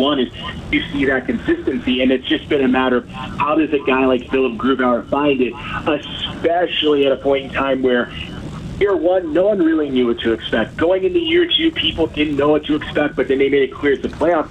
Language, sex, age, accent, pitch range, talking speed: English, male, 40-59, American, 125-150 Hz, 235 wpm